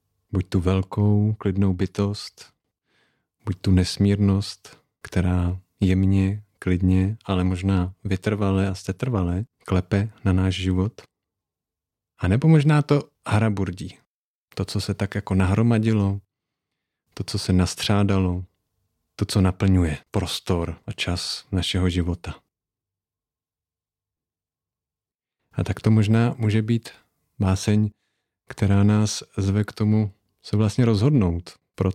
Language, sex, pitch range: Czech, male, 90-100 Hz